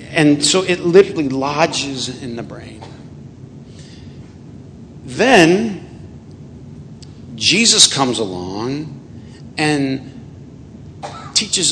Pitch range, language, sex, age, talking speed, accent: 120-145 Hz, English, male, 50-69, 70 wpm, American